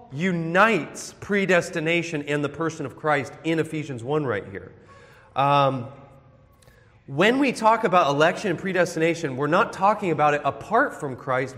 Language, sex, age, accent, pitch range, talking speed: English, male, 30-49, American, 140-210 Hz, 145 wpm